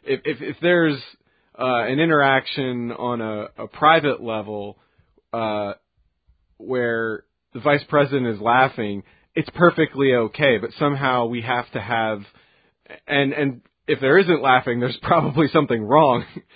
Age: 30-49